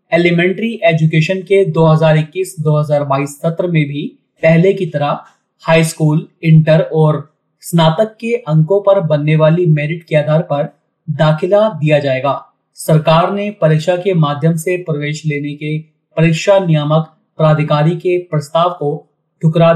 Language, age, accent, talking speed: Hindi, 30-49, native, 130 wpm